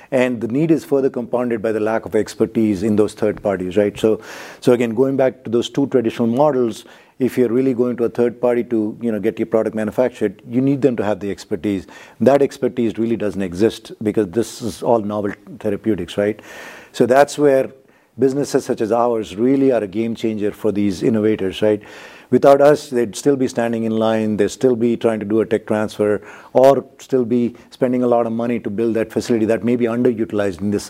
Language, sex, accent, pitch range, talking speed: English, male, Indian, 110-130 Hz, 215 wpm